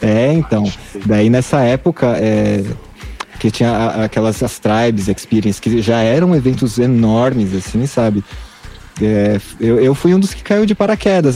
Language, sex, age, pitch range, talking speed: Portuguese, male, 20-39, 105-140 Hz, 155 wpm